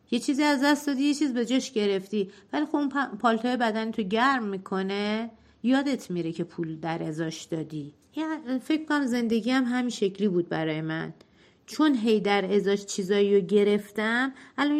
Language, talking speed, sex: Persian, 170 wpm, female